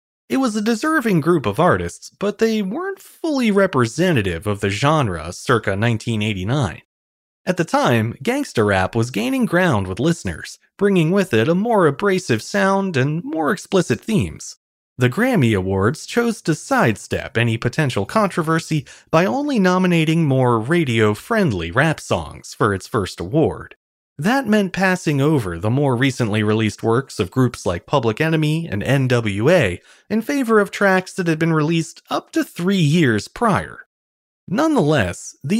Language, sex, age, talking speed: English, male, 30-49, 150 wpm